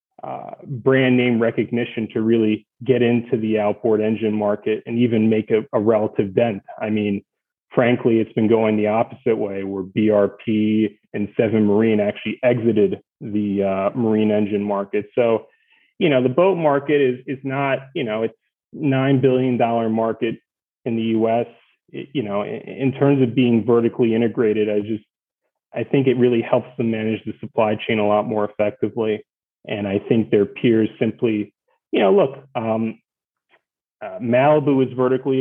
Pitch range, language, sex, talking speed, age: 110-130 Hz, English, male, 165 wpm, 30-49